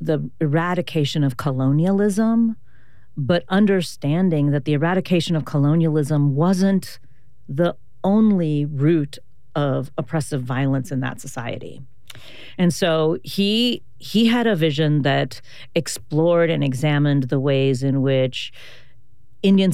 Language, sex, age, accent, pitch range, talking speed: English, female, 40-59, American, 130-170 Hz, 115 wpm